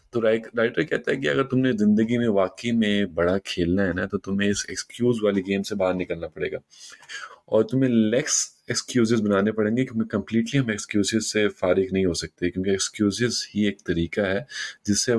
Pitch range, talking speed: 95-120 Hz, 185 wpm